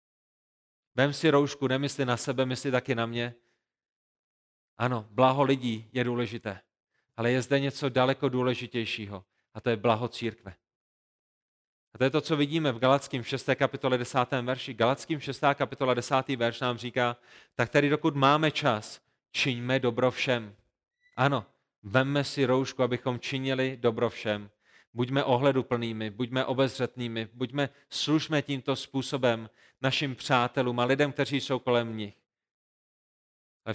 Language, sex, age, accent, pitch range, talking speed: Czech, male, 30-49, native, 115-135 Hz, 140 wpm